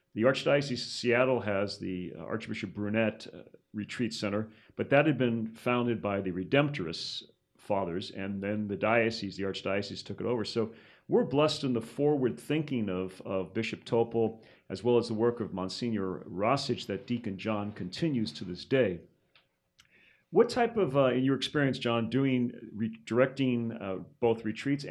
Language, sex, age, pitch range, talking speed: English, male, 40-59, 105-135 Hz, 165 wpm